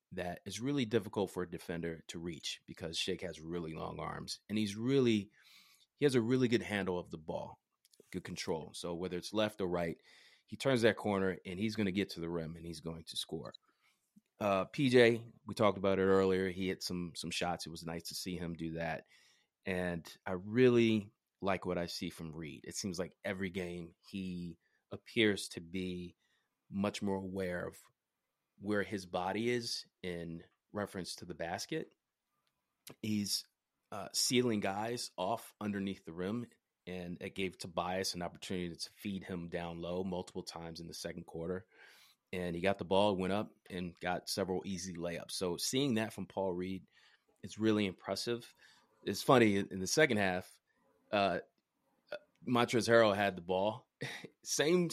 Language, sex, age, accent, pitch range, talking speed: English, male, 30-49, American, 90-110 Hz, 175 wpm